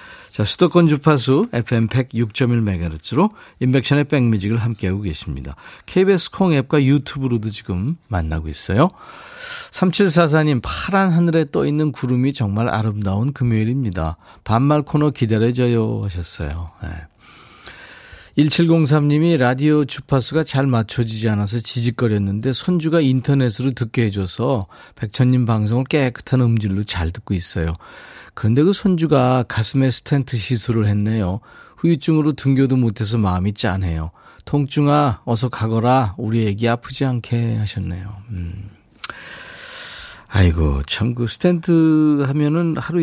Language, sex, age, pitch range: Korean, male, 40-59, 100-145 Hz